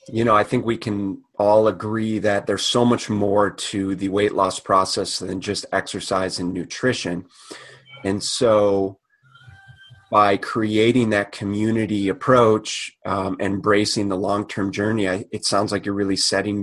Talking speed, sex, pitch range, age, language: 150 wpm, male, 100-120 Hz, 30-49, English